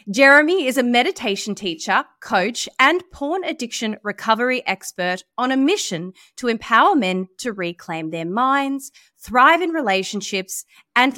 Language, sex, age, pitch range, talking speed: English, female, 30-49, 190-275 Hz, 135 wpm